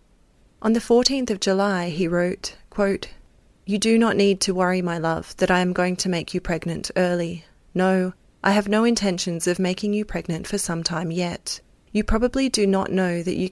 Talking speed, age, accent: 200 wpm, 30-49, Australian